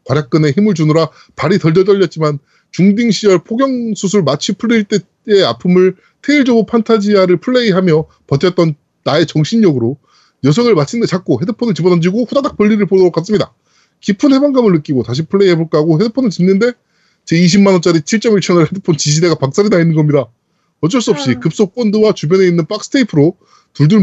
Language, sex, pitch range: Korean, male, 165-225 Hz